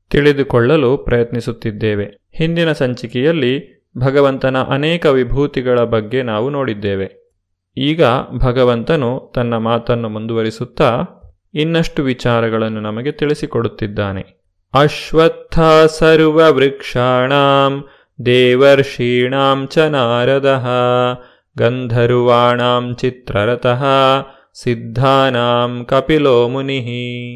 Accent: native